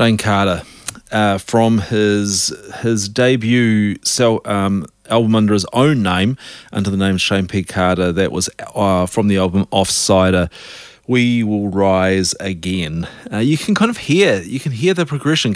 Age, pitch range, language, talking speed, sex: 30-49, 95-115 Hz, English, 155 wpm, male